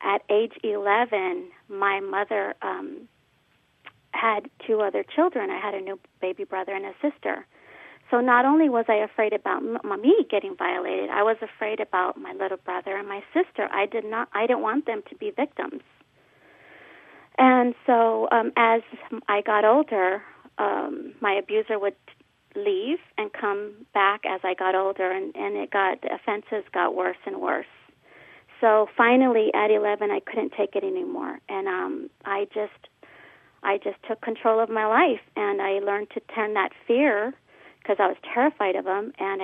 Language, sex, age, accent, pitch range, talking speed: English, female, 40-59, American, 205-260 Hz, 170 wpm